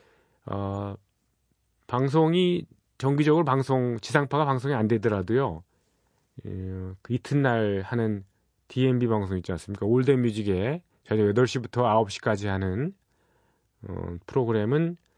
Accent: native